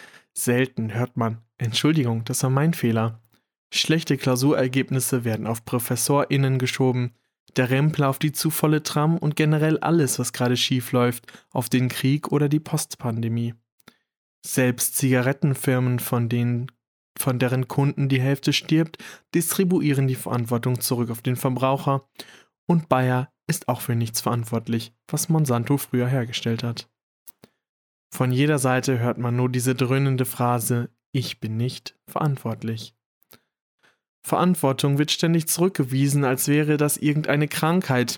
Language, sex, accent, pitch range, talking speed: German, male, German, 120-145 Hz, 135 wpm